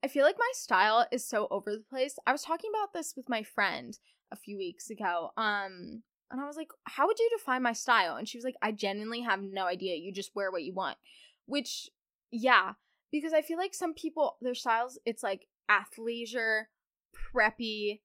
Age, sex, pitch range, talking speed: 10-29, female, 210-265 Hz, 205 wpm